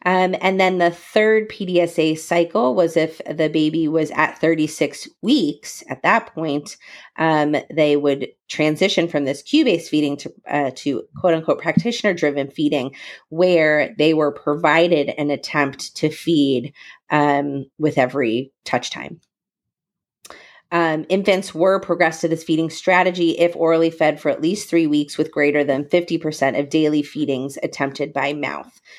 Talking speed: 150 wpm